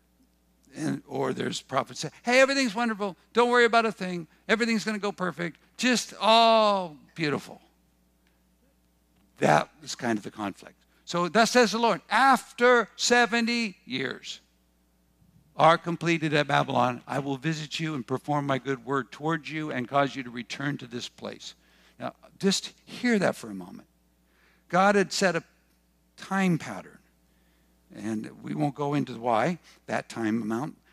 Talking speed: 155 wpm